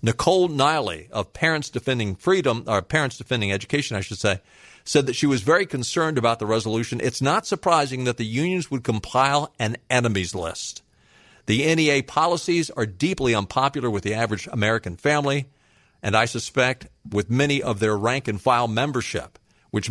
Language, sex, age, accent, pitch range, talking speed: English, male, 50-69, American, 105-130 Hz, 165 wpm